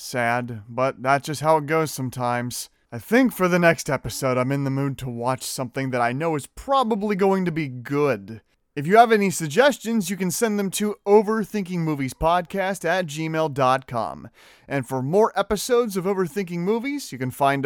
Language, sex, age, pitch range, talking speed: English, male, 30-49, 135-205 Hz, 180 wpm